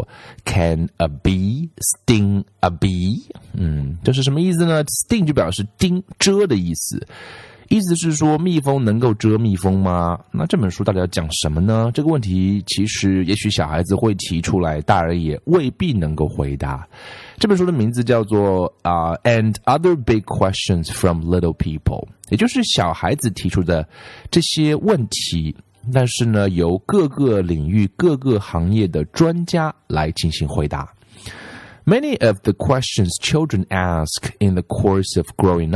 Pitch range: 90-120 Hz